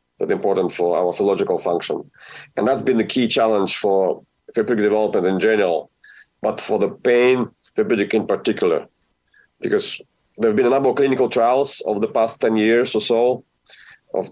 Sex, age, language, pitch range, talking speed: male, 40-59, English, 70-120 Hz, 170 wpm